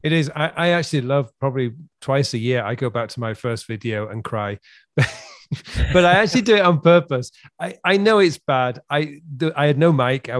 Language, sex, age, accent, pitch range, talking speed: English, male, 40-59, British, 125-150 Hz, 215 wpm